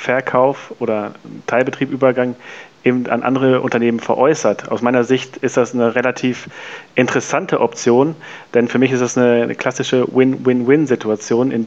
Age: 40-59